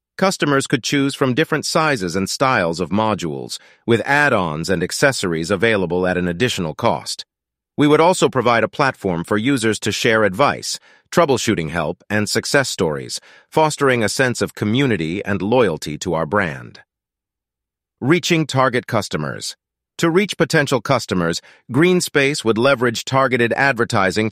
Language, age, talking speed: English, 40-59, 140 wpm